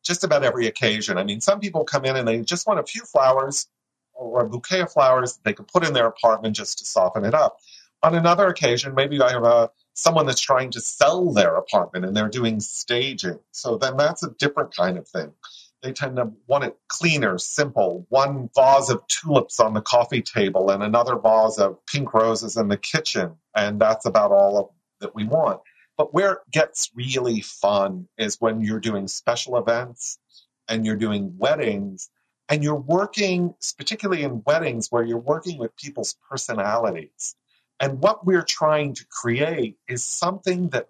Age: 40-59